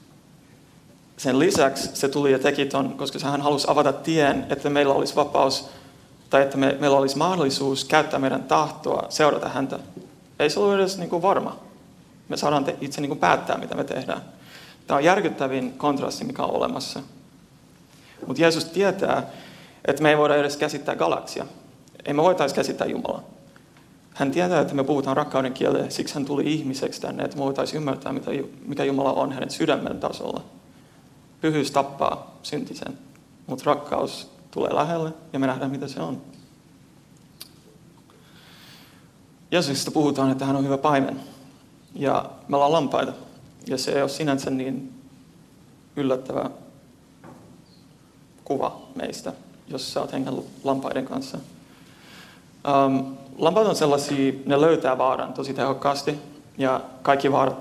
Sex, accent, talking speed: male, native, 135 wpm